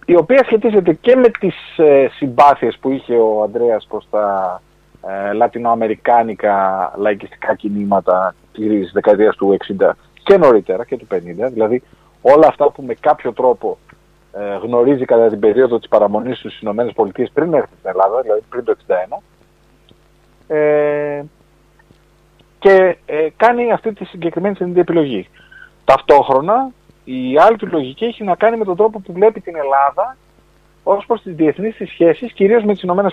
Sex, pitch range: male, 120-195 Hz